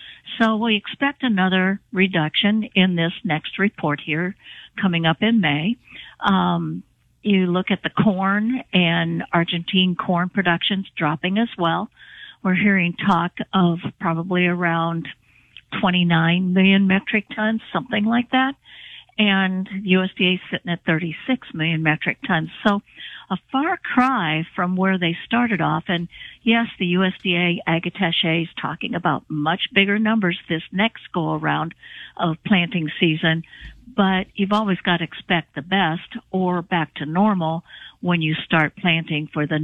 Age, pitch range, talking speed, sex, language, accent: 50-69, 165-210 Hz, 140 wpm, female, English, American